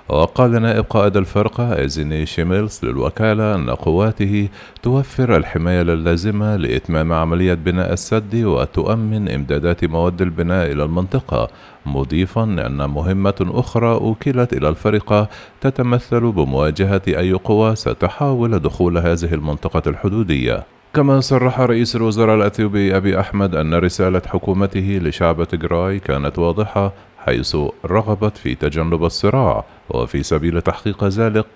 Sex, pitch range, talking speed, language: male, 85-110 Hz, 115 wpm, Arabic